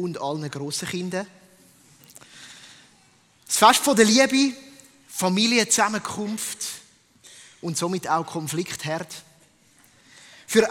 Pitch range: 175-220 Hz